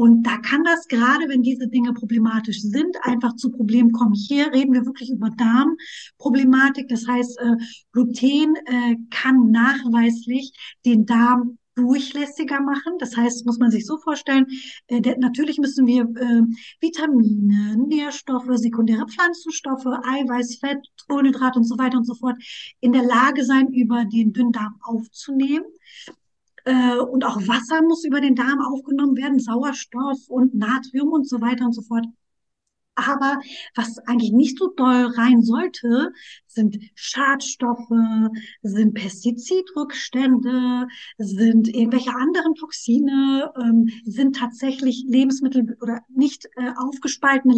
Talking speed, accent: 130 wpm, German